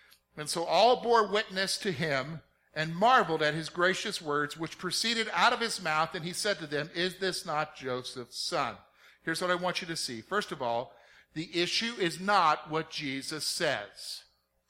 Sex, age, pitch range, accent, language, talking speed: male, 50-69, 160-230 Hz, American, English, 190 wpm